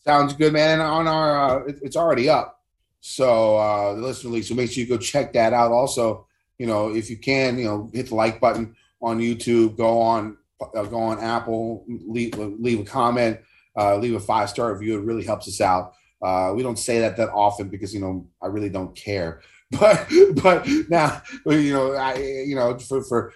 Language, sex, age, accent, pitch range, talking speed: English, male, 30-49, American, 105-140 Hz, 210 wpm